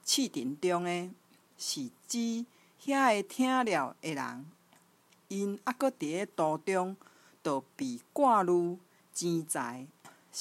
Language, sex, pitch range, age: Chinese, female, 155-230 Hz, 50-69